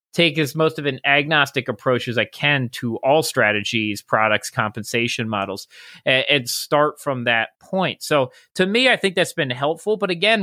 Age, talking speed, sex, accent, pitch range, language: 30-49, 180 wpm, male, American, 125-160 Hz, English